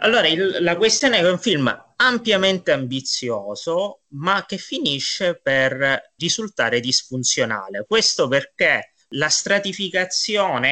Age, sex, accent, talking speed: 30-49, male, native, 120 wpm